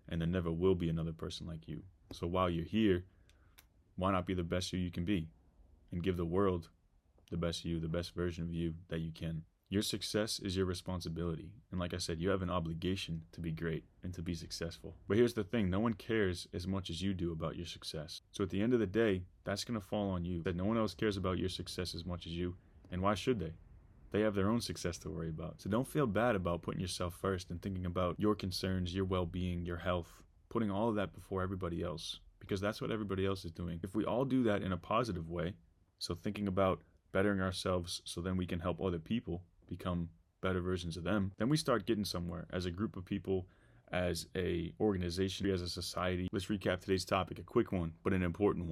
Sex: male